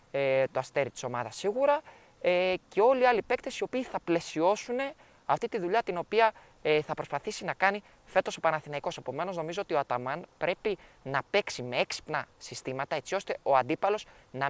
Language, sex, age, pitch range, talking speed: Greek, male, 20-39, 135-205 Hz, 175 wpm